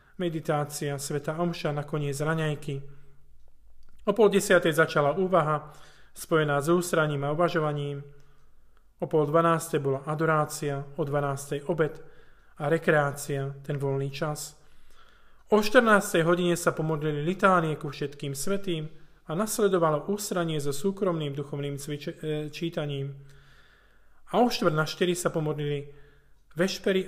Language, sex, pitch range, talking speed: Slovak, male, 145-170 Hz, 115 wpm